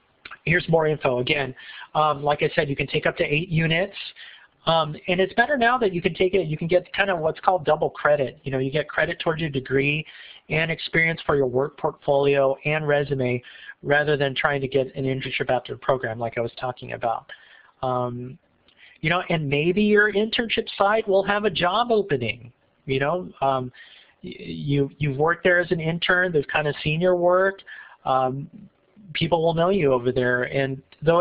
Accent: American